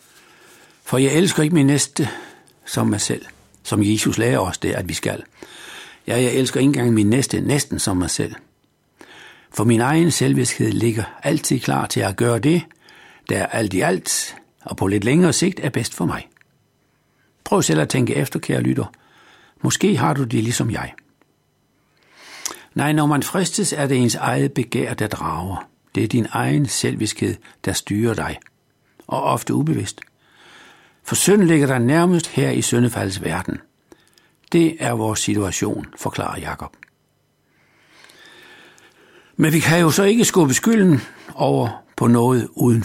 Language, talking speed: Danish, 160 wpm